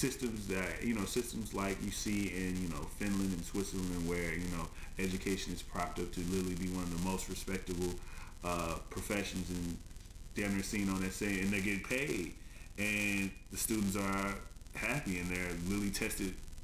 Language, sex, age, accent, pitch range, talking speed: English, male, 30-49, American, 85-100 Hz, 185 wpm